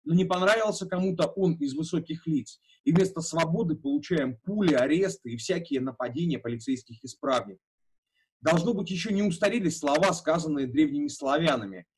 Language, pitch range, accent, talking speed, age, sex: Russian, 135-185 Hz, native, 140 wpm, 30-49, male